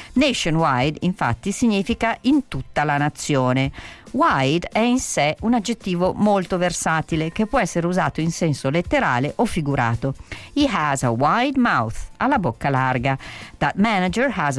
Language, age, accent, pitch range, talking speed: Italian, 50-69, native, 135-200 Hz, 145 wpm